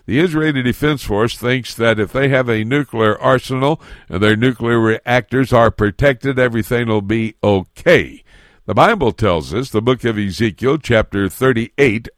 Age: 60-79